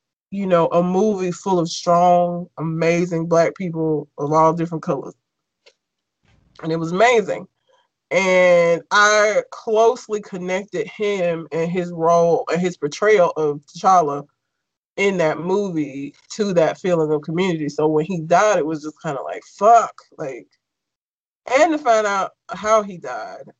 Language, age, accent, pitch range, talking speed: English, 20-39, American, 160-200 Hz, 145 wpm